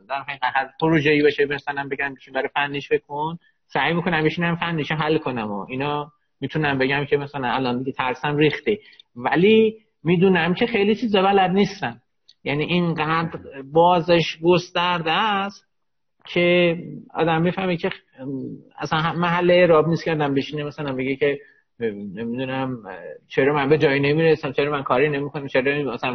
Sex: male